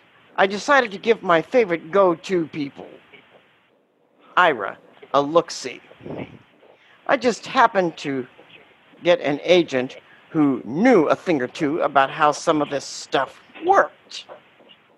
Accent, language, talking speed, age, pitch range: American, English, 125 wpm, 60-79, 145-210 Hz